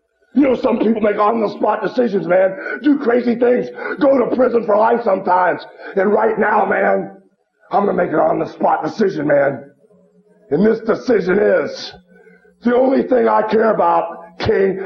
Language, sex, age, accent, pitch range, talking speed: English, male, 50-69, American, 185-235 Hz, 160 wpm